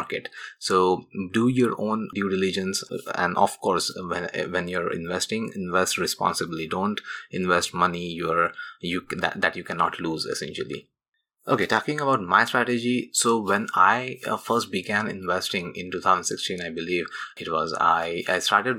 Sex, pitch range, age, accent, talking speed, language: male, 85-100 Hz, 20-39, Indian, 145 wpm, English